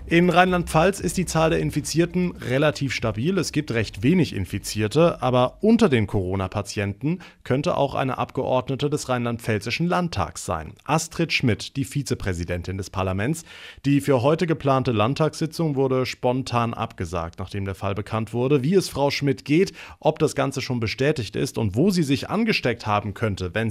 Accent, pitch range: German, 110-155 Hz